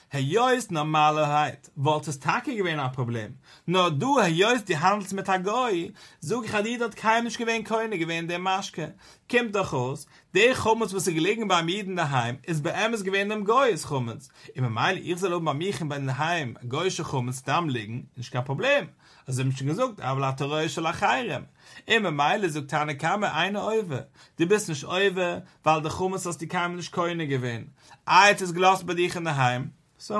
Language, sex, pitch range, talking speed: English, male, 140-195 Hz, 200 wpm